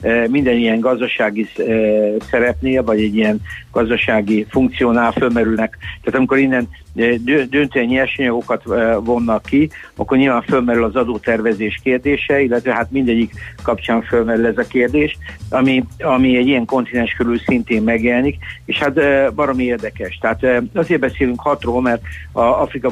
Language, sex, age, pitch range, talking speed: Hungarian, male, 60-79, 110-130 Hz, 130 wpm